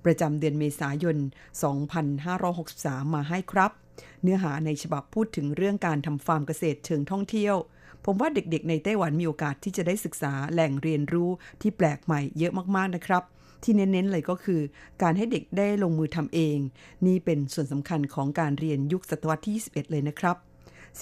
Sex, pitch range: female, 150-185 Hz